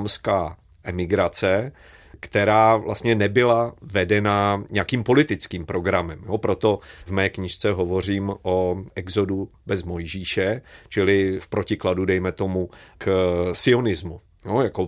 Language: Czech